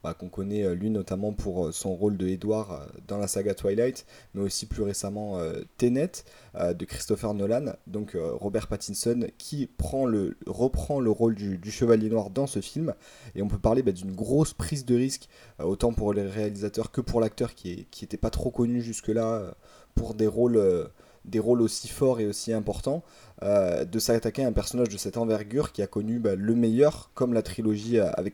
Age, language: 20-39, French